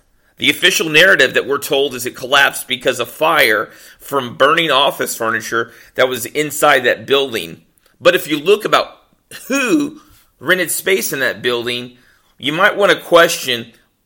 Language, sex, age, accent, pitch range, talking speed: English, male, 40-59, American, 125-165 Hz, 160 wpm